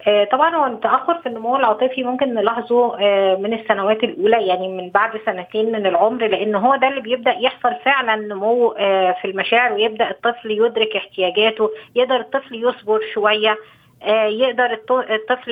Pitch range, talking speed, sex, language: 210-245 Hz, 145 wpm, female, Arabic